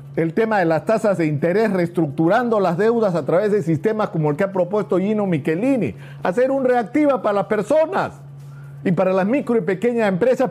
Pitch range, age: 145-210 Hz, 50-69